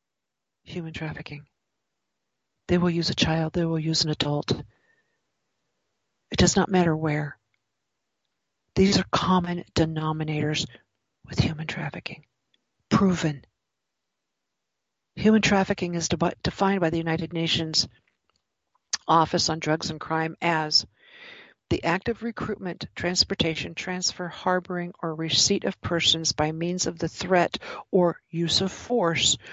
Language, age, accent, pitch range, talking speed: English, 50-69, American, 160-190 Hz, 120 wpm